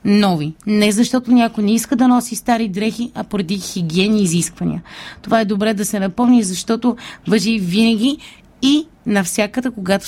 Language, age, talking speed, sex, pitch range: Bulgarian, 20-39, 155 wpm, female, 190-235 Hz